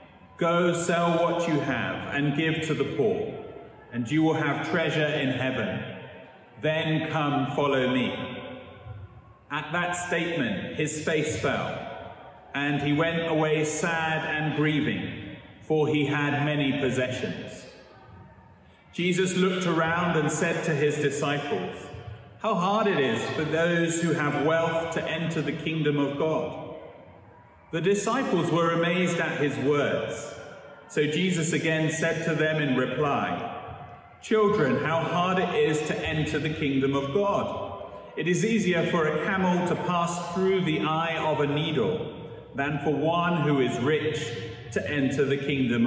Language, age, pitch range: English, 40-59, 140-170 Hz